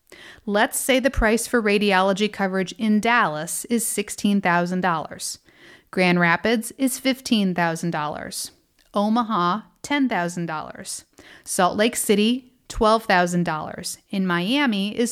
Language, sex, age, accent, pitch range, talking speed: English, female, 30-49, American, 185-250 Hz, 95 wpm